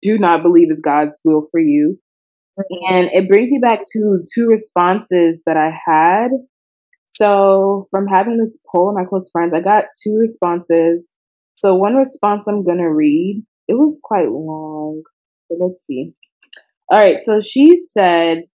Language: English